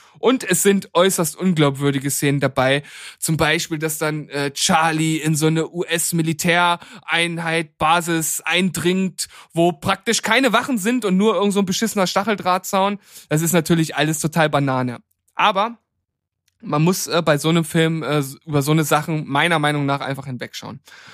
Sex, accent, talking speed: male, German, 155 wpm